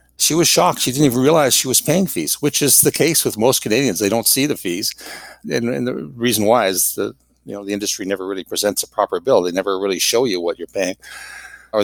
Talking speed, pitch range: 255 wpm, 95-120 Hz